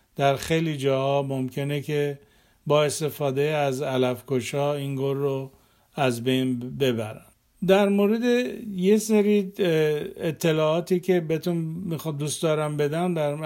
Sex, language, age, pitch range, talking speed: male, Persian, 50-69, 145-175 Hz, 115 wpm